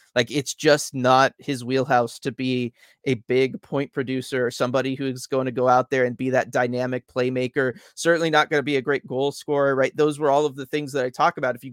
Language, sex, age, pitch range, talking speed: English, male, 30-49, 125-145 Hz, 245 wpm